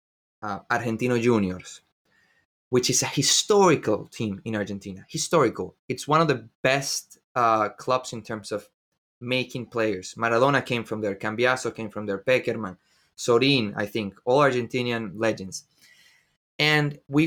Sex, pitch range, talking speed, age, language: male, 110-140 Hz, 140 wpm, 20-39, English